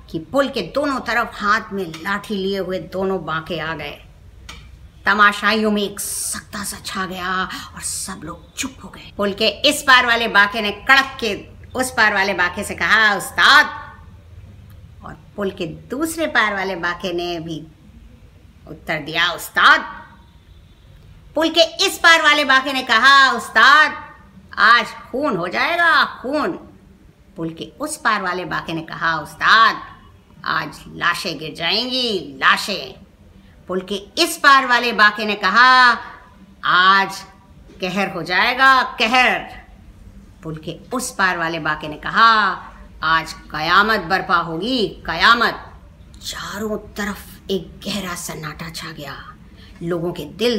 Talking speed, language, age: 140 wpm, Hindi, 50-69